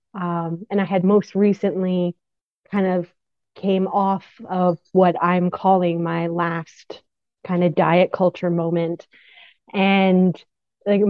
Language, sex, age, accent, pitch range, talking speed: English, female, 30-49, American, 175-195 Hz, 125 wpm